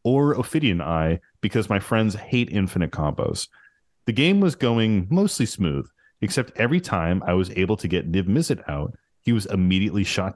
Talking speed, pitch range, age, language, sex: 170 wpm, 90-125 Hz, 30-49, English, male